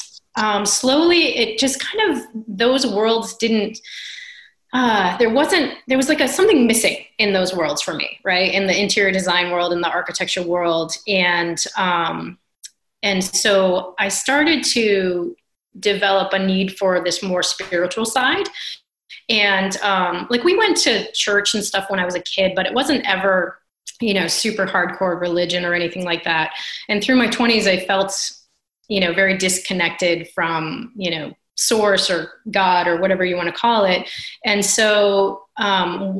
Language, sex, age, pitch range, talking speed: English, female, 30-49, 180-235 Hz, 165 wpm